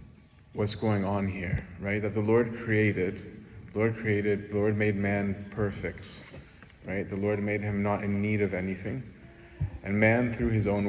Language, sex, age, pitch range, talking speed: English, male, 30-49, 95-110 Hz, 170 wpm